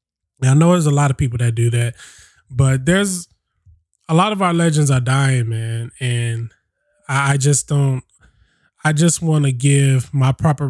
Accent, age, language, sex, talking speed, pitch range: American, 20-39, English, male, 180 wpm, 120-140 Hz